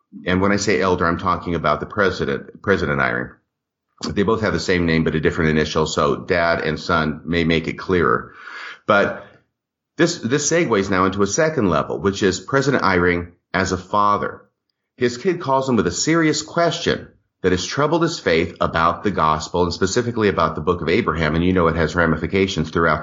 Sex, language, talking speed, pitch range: male, English, 200 wpm, 85-115 Hz